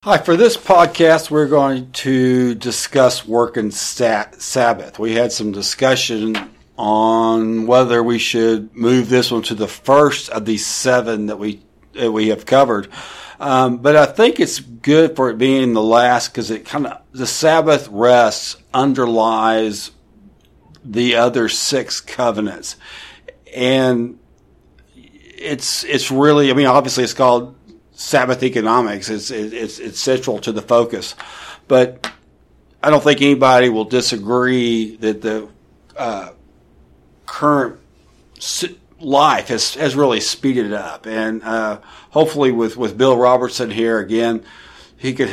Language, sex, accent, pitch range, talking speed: English, male, American, 110-130 Hz, 140 wpm